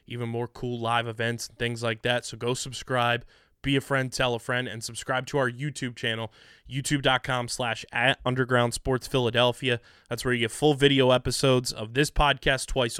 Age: 20-39